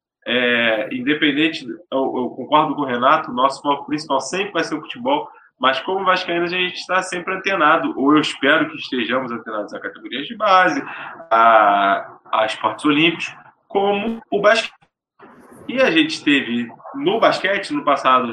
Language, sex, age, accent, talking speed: Portuguese, male, 20-39, Brazilian, 160 wpm